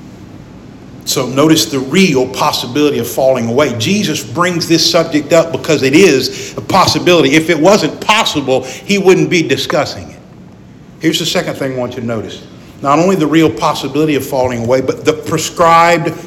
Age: 50-69